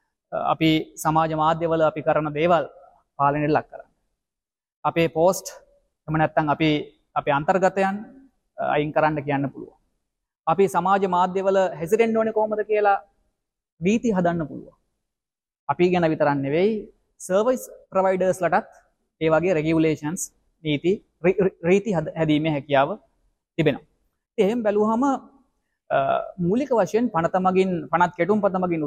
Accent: Indian